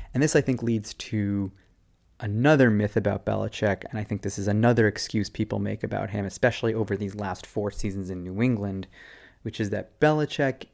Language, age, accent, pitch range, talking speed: English, 20-39, American, 100-120 Hz, 190 wpm